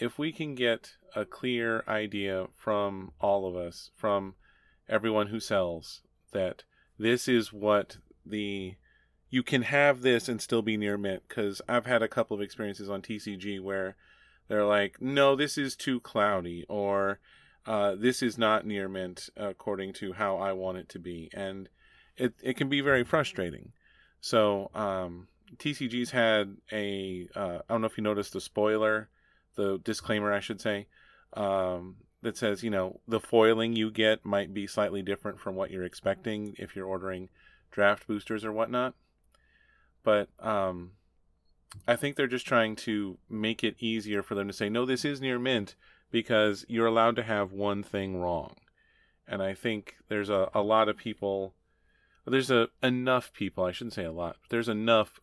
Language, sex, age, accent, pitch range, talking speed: English, male, 30-49, American, 95-115 Hz, 175 wpm